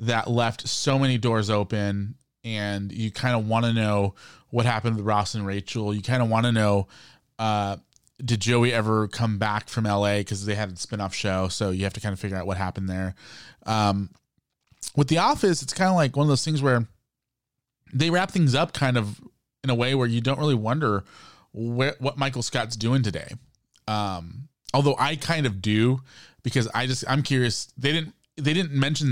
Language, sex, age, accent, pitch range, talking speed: English, male, 20-39, American, 105-130 Hz, 205 wpm